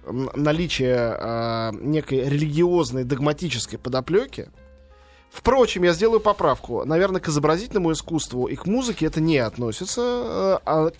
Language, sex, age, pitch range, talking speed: Russian, male, 20-39, 130-185 Hz, 115 wpm